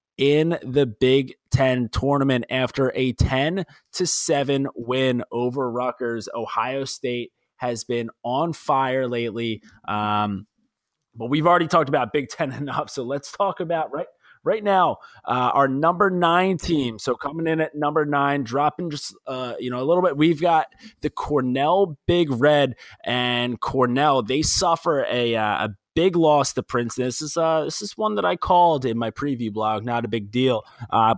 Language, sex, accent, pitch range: English, male, American, 115-150 Hz